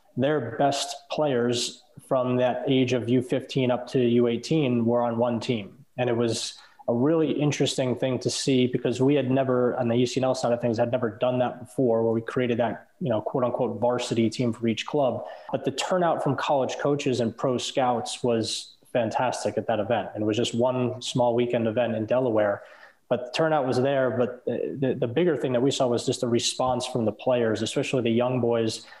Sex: male